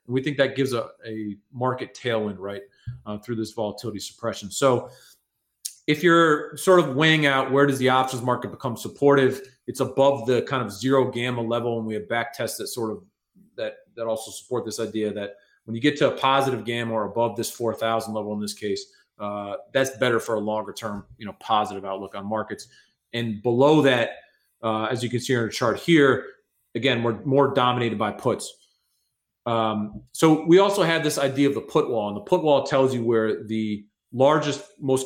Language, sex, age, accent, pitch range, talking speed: English, male, 30-49, American, 115-140 Hz, 200 wpm